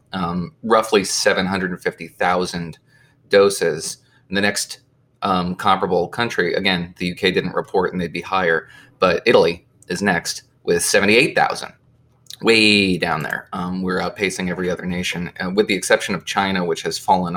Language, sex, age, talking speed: English, male, 20-39, 140 wpm